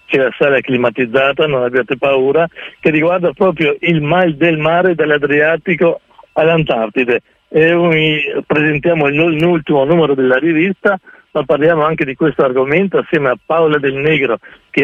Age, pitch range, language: 60-79, 135-170 Hz, Italian